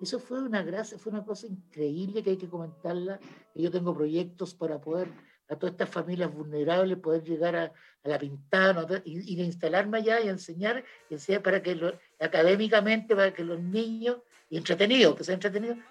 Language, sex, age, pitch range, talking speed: Spanish, male, 60-79, 175-220 Hz, 190 wpm